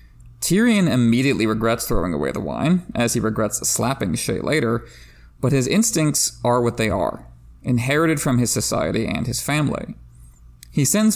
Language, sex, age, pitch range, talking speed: English, male, 30-49, 105-145 Hz, 155 wpm